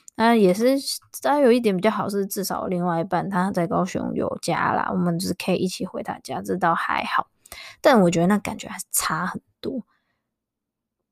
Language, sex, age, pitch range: Chinese, female, 20-39, 175-210 Hz